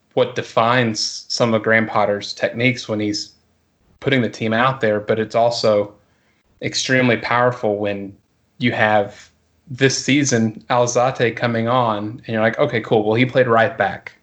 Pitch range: 105-120 Hz